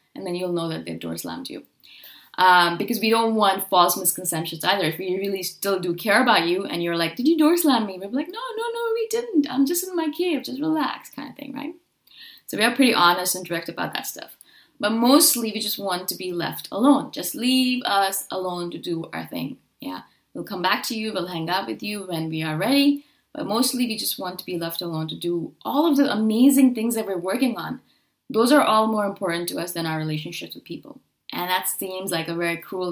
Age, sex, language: 20-39, female, English